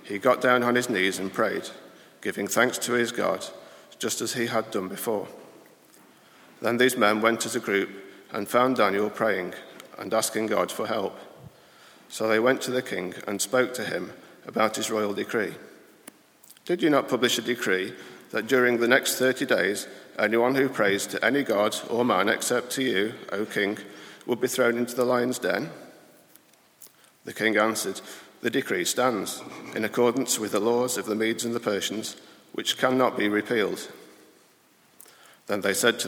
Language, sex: English, male